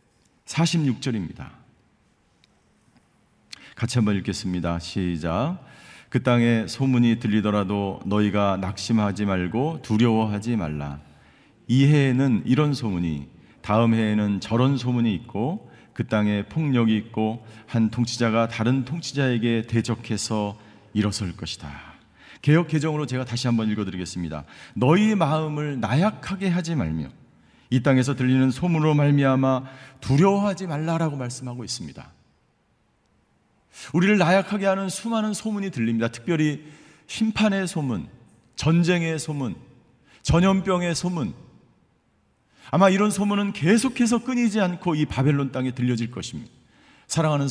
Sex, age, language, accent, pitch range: male, 40-59, Korean, native, 110-160 Hz